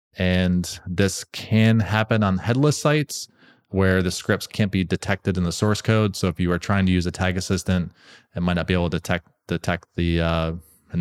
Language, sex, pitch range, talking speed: English, male, 90-105 Hz, 205 wpm